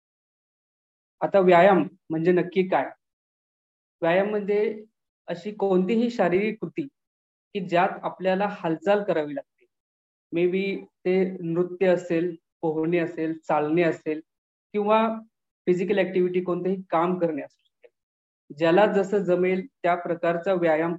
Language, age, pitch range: English, 20-39, 160-195 Hz